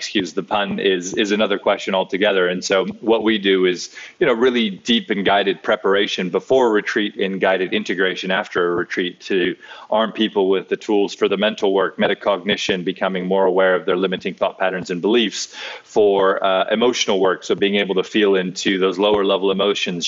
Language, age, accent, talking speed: English, 30-49, American, 190 wpm